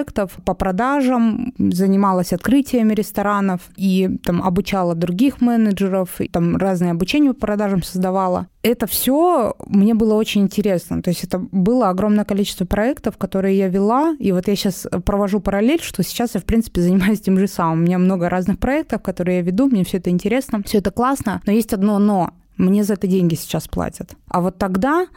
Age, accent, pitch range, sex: 20-39, native, 180-215 Hz, female